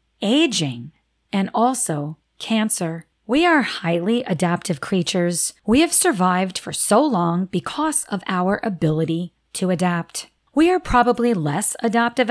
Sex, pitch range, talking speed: female, 165-240 Hz, 125 wpm